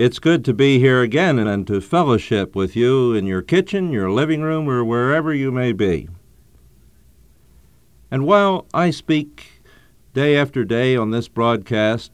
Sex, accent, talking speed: male, American, 160 wpm